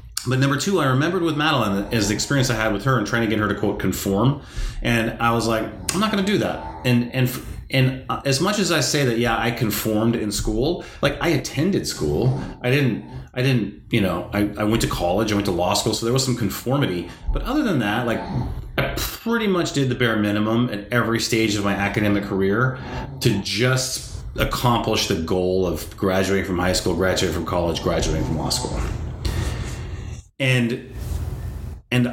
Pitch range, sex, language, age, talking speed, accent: 95-125 Hz, male, English, 30-49, 205 wpm, American